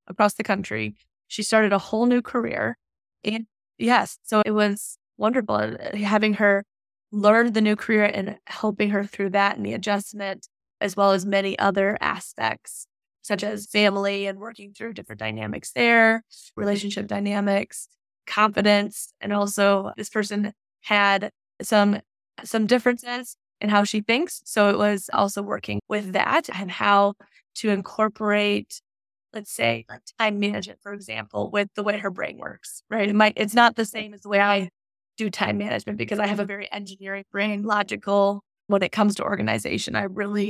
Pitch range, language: 200-215 Hz, English